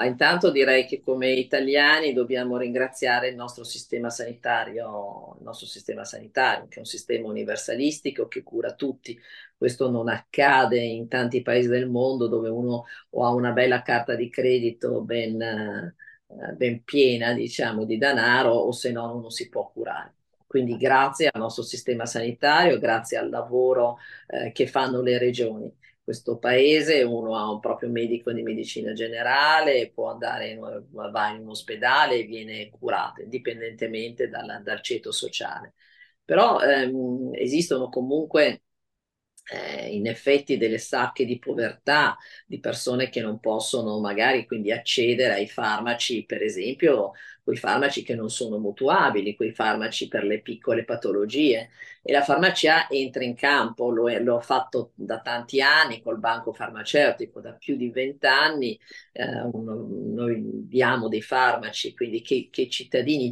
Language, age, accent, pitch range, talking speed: Italian, 40-59, native, 115-130 Hz, 140 wpm